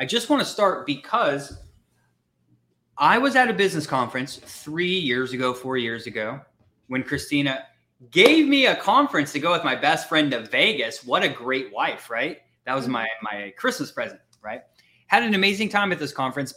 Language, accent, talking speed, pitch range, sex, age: English, American, 185 wpm, 125-195 Hz, male, 20-39